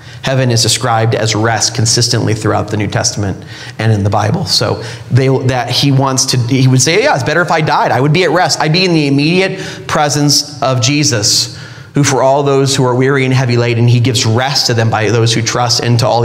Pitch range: 120-160 Hz